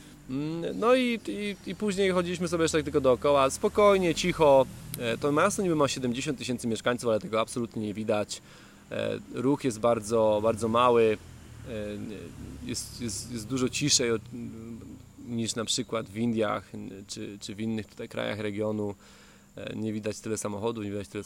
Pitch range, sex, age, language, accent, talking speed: 105-125 Hz, male, 20-39, Polish, native, 155 wpm